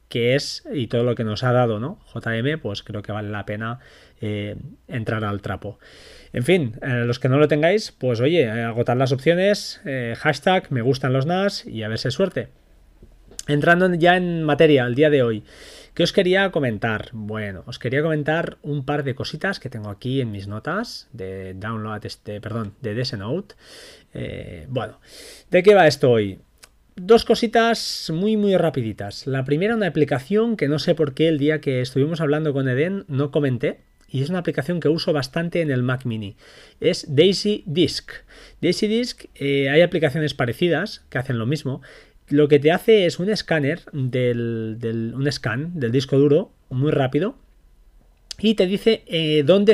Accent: Spanish